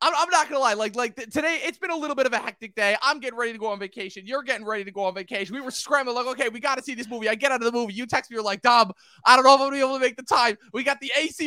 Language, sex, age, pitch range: English, male, 20-39, 175-245 Hz